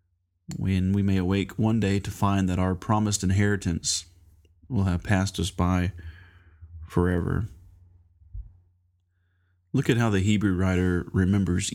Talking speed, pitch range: 130 wpm, 90-100 Hz